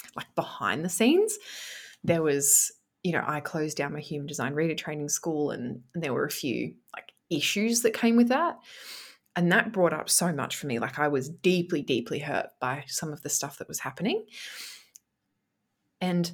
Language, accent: English, Australian